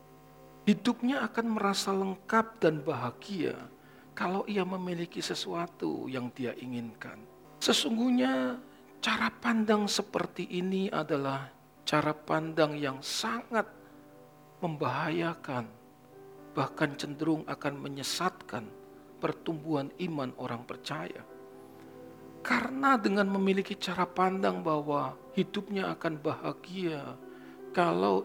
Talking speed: 90 wpm